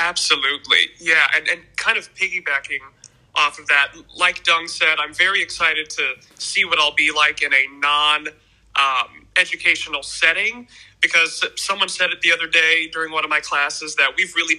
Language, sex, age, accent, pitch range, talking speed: English, male, 30-49, American, 150-180 Hz, 175 wpm